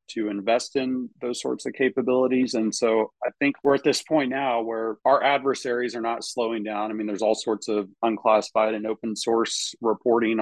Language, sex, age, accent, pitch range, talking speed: English, male, 40-59, American, 105-120 Hz, 195 wpm